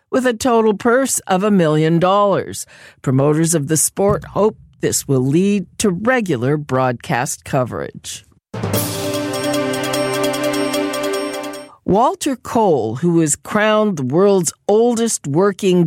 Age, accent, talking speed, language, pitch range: 50-69, American, 110 wpm, English, 145-205 Hz